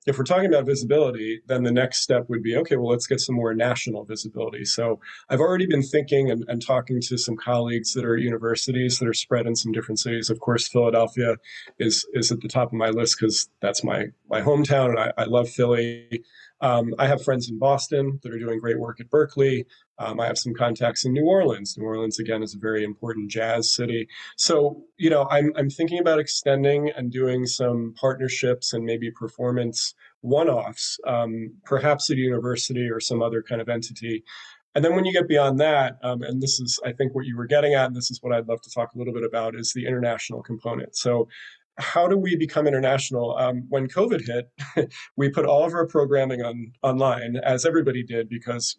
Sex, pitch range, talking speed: male, 115-140 Hz, 215 wpm